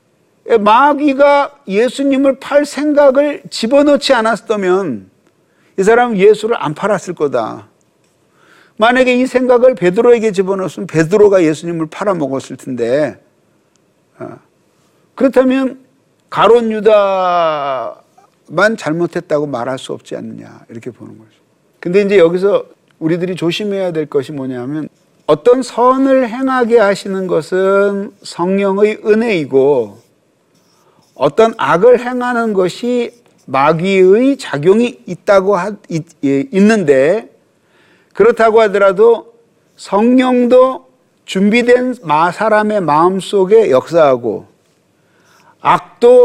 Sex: male